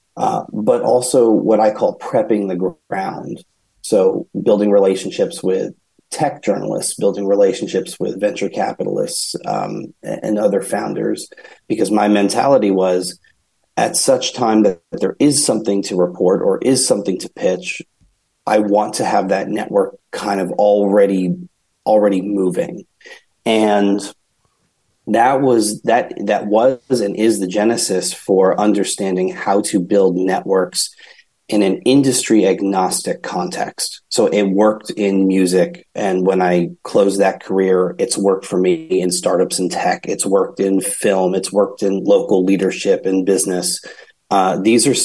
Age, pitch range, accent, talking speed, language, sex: 30-49, 95-105 Hz, American, 145 wpm, English, male